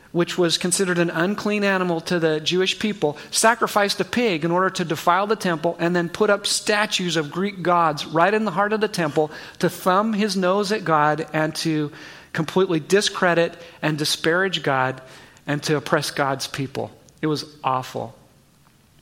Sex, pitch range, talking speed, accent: male, 150-185 Hz, 175 wpm, American